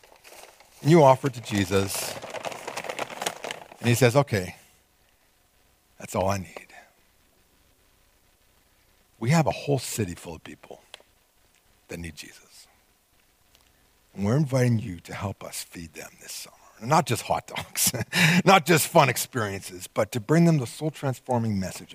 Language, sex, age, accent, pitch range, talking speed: English, male, 50-69, American, 110-170 Hz, 140 wpm